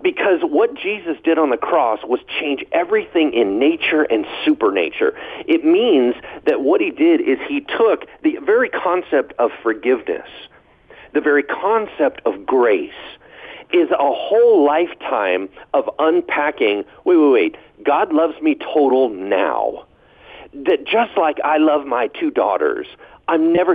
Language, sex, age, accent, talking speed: English, male, 50-69, American, 145 wpm